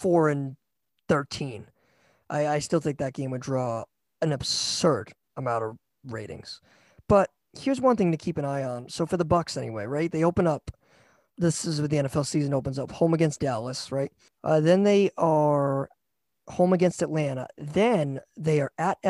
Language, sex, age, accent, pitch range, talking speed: English, male, 20-39, American, 135-165 Hz, 180 wpm